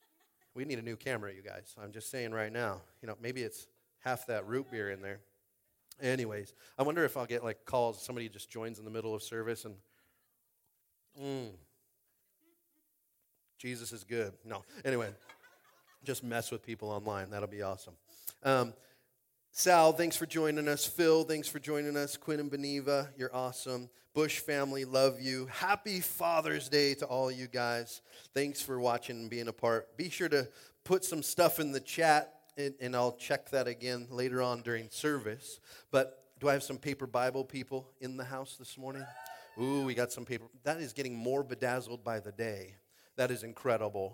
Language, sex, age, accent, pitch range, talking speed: English, male, 40-59, American, 115-140 Hz, 185 wpm